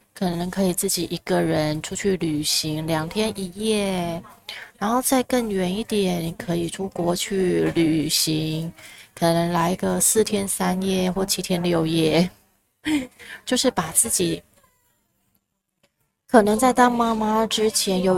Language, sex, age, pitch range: Chinese, female, 20-39, 165-205 Hz